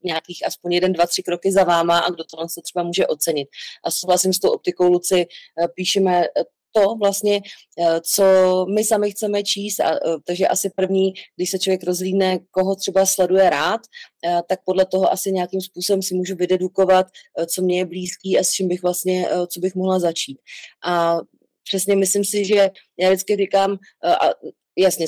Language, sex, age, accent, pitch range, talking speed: English, female, 30-49, Czech, 170-195 Hz, 175 wpm